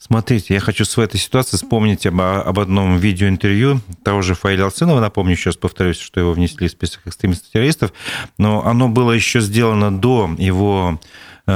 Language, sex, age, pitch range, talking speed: Russian, male, 40-59, 95-120 Hz, 160 wpm